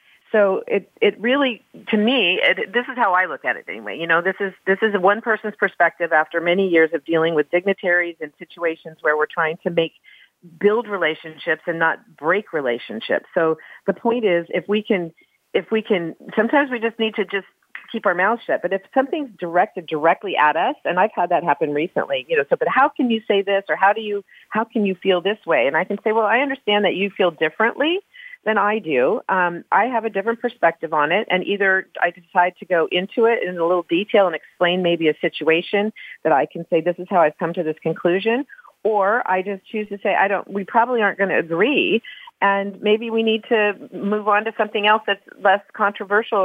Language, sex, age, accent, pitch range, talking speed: English, female, 40-59, American, 175-220 Hz, 225 wpm